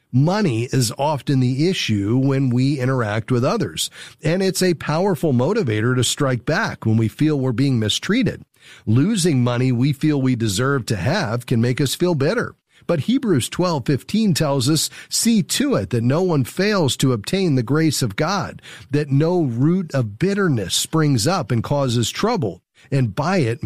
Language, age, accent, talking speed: English, 40-59, American, 175 wpm